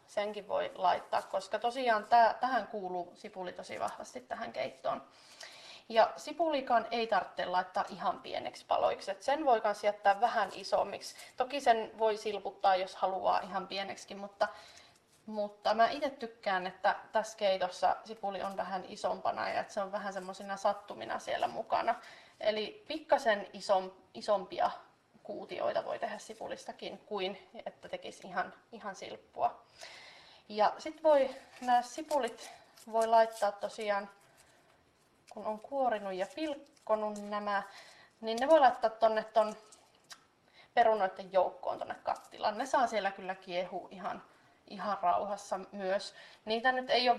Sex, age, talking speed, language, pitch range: female, 30-49, 135 wpm, Finnish, 195-230 Hz